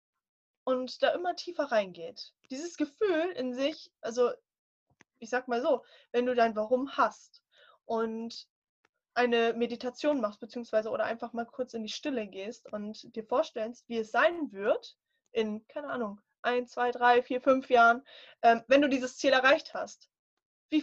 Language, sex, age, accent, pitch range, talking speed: German, female, 10-29, German, 225-290 Hz, 160 wpm